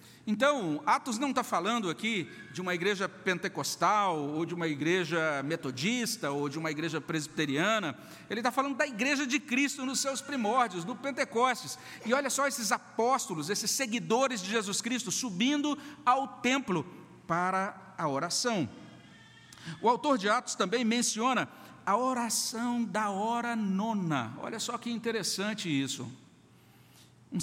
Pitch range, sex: 185-250 Hz, male